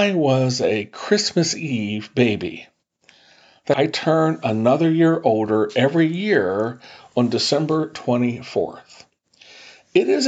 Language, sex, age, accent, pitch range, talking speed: English, male, 50-69, American, 120-170 Hz, 110 wpm